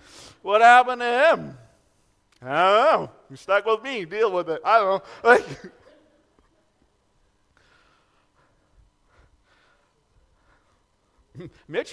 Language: English